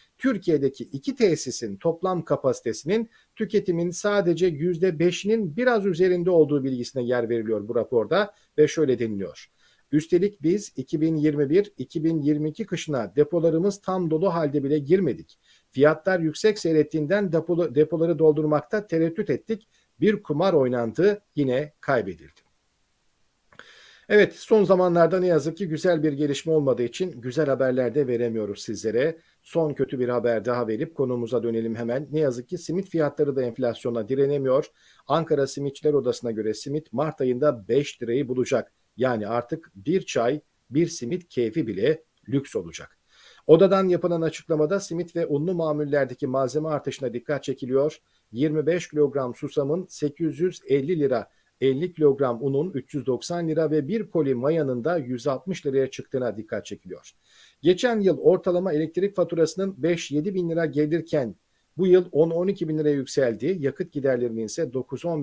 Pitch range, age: 135-175 Hz, 50-69